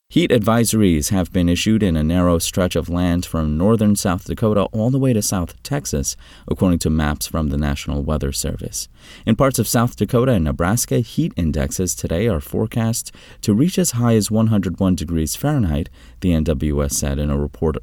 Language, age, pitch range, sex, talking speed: English, 30-49, 80-110 Hz, male, 185 wpm